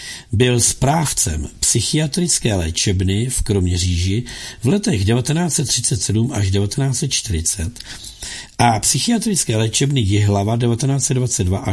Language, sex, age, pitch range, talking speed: Czech, male, 60-79, 105-130 Hz, 85 wpm